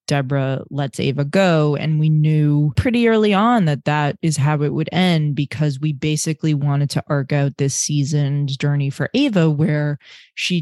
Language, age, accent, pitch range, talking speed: English, 20-39, American, 140-160 Hz, 175 wpm